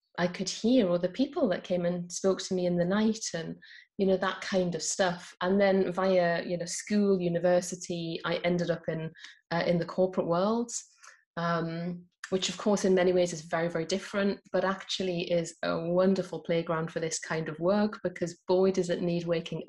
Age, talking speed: 30-49, 200 wpm